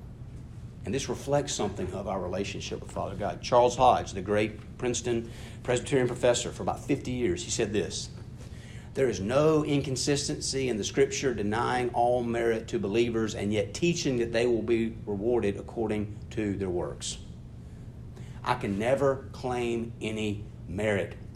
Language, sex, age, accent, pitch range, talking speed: English, male, 50-69, American, 115-175 Hz, 150 wpm